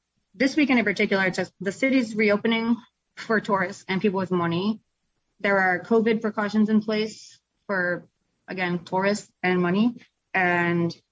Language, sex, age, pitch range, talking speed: English, female, 20-39, 185-215 Hz, 145 wpm